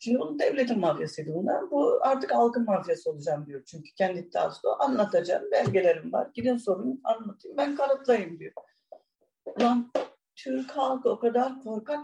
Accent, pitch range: native, 205-265 Hz